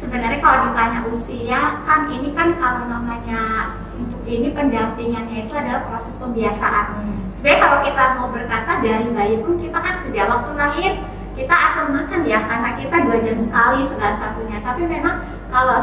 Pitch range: 235-295 Hz